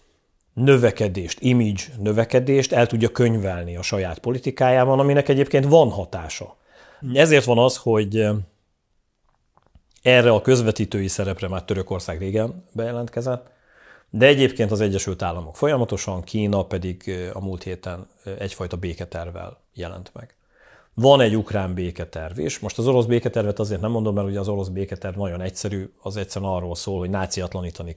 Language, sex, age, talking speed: Hungarian, male, 40-59, 140 wpm